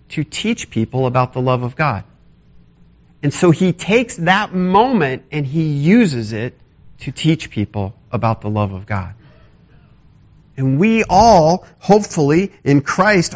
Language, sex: English, male